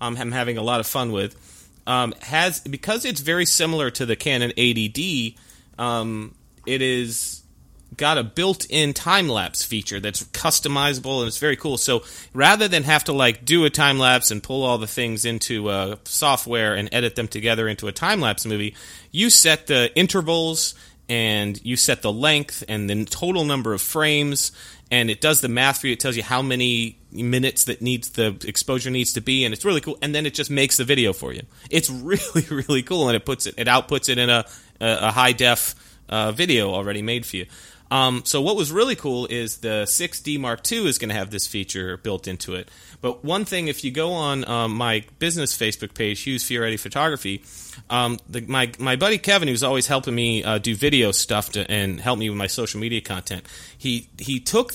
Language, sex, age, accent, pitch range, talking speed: English, male, 30-49, American, 110-140 Hz, 205 wpm